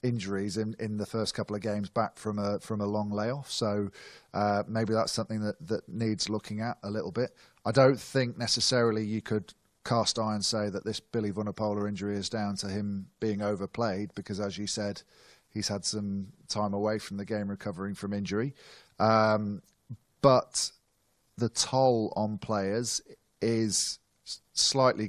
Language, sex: English, male